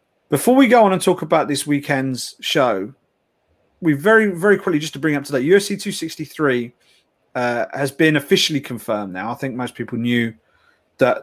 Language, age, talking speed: English, 40-59, 175 wpm